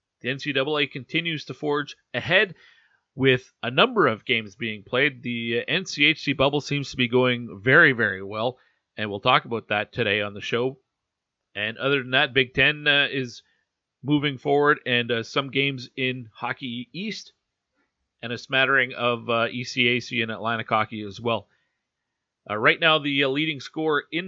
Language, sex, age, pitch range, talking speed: English, male, 40-59, 115-140 Hz, 170 wpm